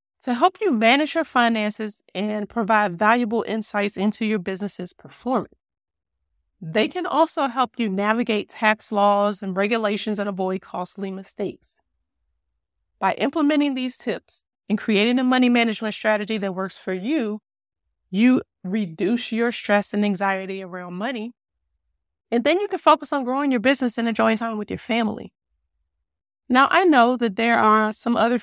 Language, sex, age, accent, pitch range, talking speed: English, female, 40-59, American, 200-245 Hz, 155 wpm